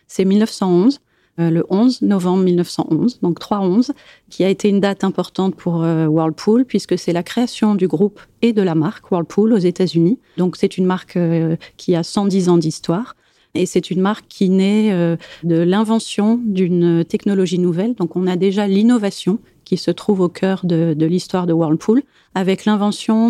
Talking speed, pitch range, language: 180 wpm, 170-205 Hz, French